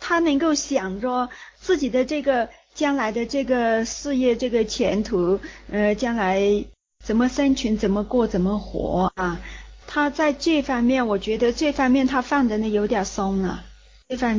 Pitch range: 205-260 Hz